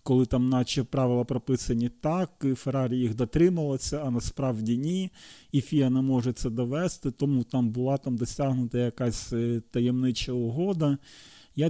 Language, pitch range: Ukrainian, 120-140 Hz